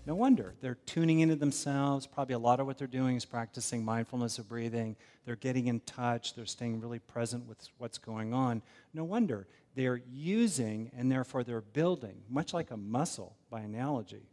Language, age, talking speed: English, 50-69, 185 wpm